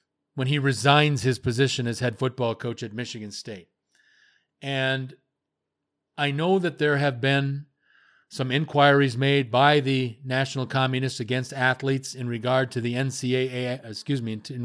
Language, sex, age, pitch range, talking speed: English, male, 40-59, 125-145 Hz, 150 wpm